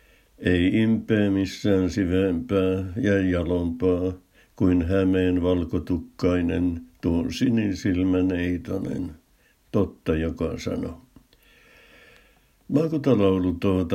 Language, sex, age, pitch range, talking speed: Finnish, male, 60-79, 90-100 Hz, 70 wpm